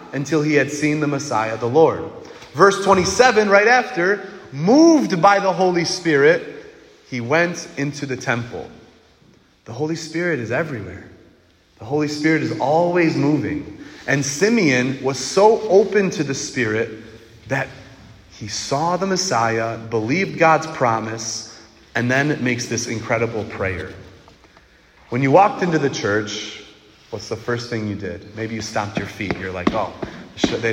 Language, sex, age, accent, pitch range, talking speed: English, male, 30-49, American, 110-155 Hz, 150 wpm